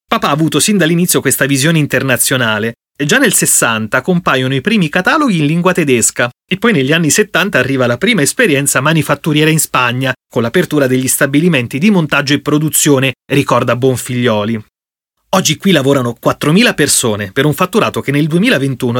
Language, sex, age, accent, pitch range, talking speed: Italian, male, 30-49, native, 130-180 Hz, 165 wpm